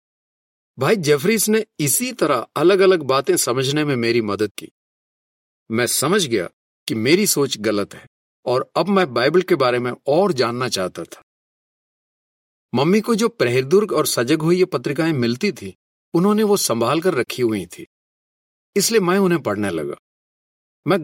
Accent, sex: native, male